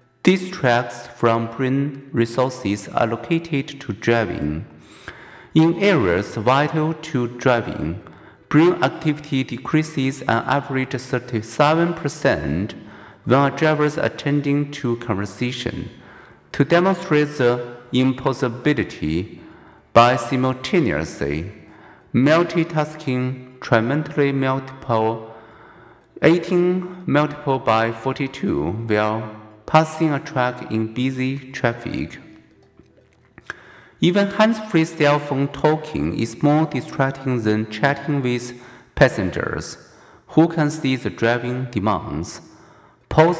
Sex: male